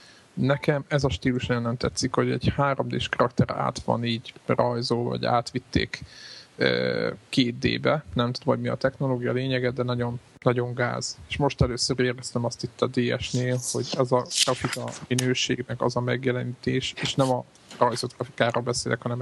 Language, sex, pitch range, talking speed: Hungarian, male, 120-130 Hz, 170 wpm